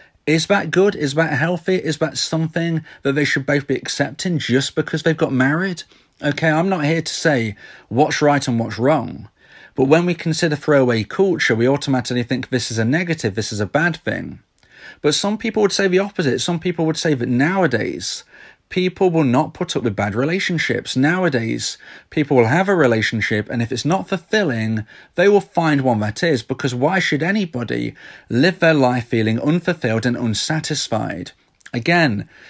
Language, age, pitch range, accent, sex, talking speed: English, 30-49, 125-165 Hz, British, male, 185 wpm